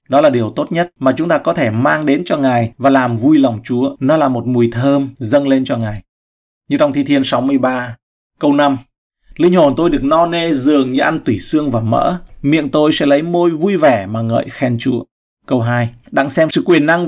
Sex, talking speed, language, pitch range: male, 230 wpm, Vietnamese, 115-140 Hz